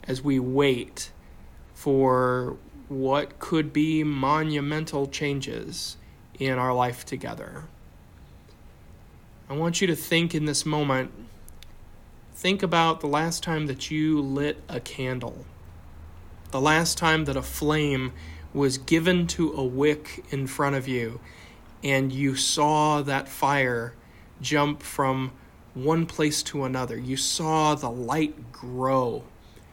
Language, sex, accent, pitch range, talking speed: English, male, American, 115-155 Hz, 125 wpm